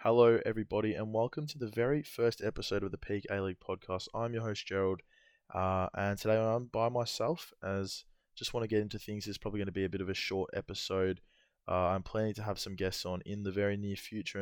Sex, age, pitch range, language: male, 20-39, 95-105 Hz, English